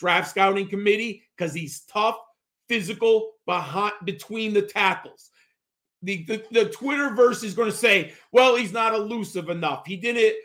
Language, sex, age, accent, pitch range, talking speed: English, male, 40-59, American, 180-230 Hz, 140 wpm